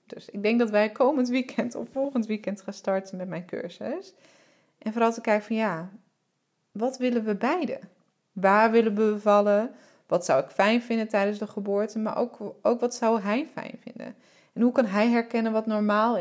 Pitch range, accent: 210-250 Hz, Dutch